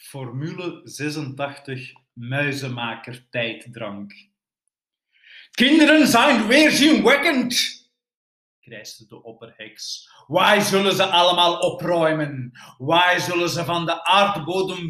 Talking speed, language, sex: 85 wpm, Dutch, male